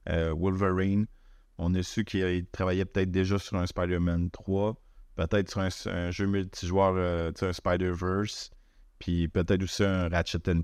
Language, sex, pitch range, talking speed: French, male, 90-100 Hz, 160 wpm